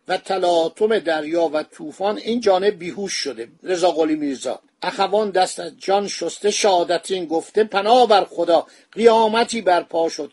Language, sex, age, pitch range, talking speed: Persian, male, 50-69, 165-205 Hz, 140 wpm